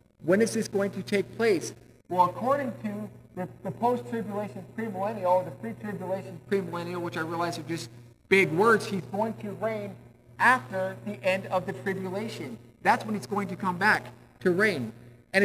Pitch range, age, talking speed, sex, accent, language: 170-205 Hz, 50-69, 175 wpm, male, American, English